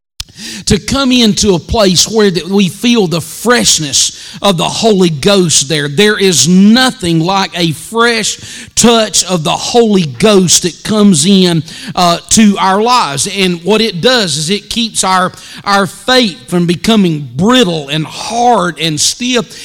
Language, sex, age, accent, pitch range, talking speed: English, male, 40-59, American, 175-225 Hz, 155 wpm